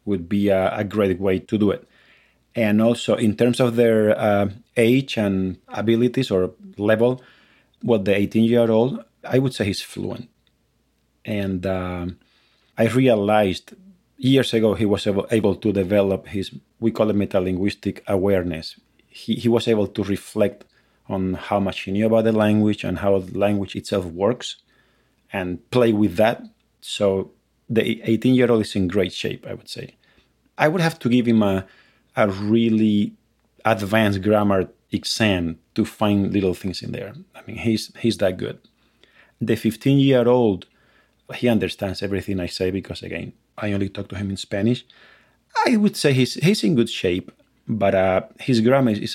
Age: 30-49